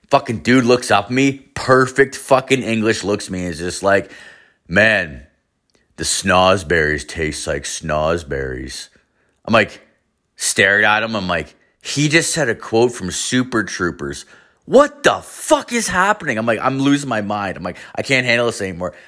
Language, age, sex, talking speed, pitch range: English, 30-49, male, 175 wpm, 95-125 Hz